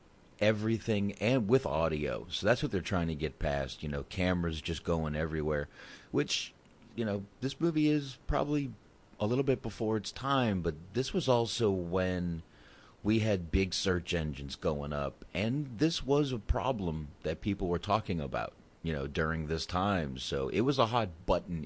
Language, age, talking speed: English, 40-59, 175 wpm